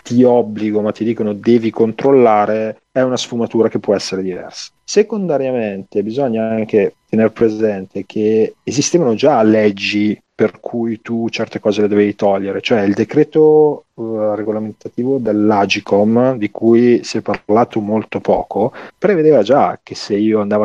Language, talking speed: Italian, 140 wpm